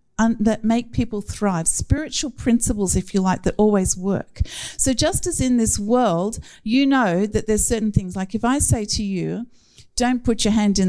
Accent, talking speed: Australian, 195 wpm